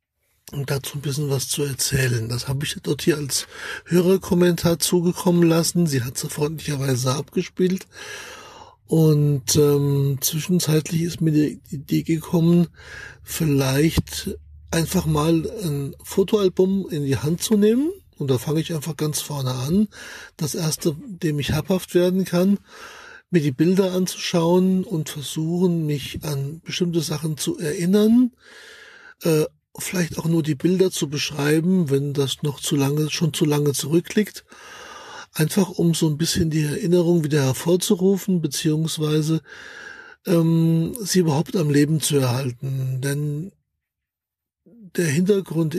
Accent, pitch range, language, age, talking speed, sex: German, 145-180 Hz, German, 60-79, 140 wpm, male